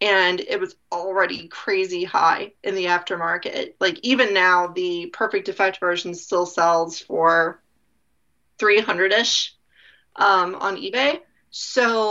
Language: English